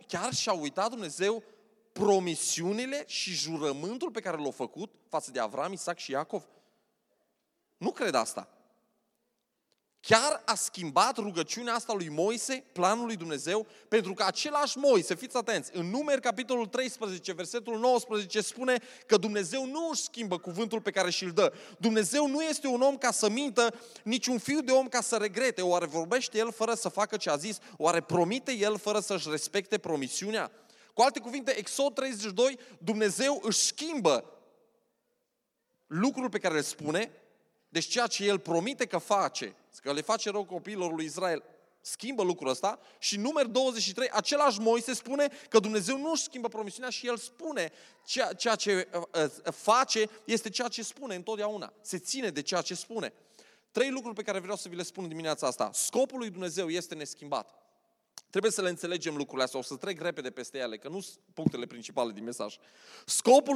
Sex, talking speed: male, 170 wpm